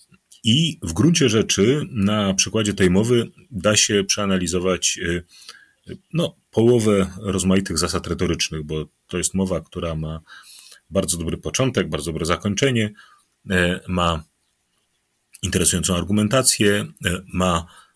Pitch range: 85-100 Hz